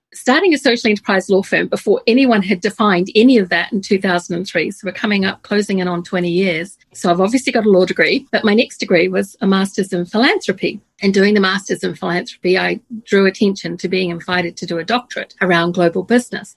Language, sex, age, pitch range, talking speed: English, female, 50-69, 180-220 Hz, 215 wpm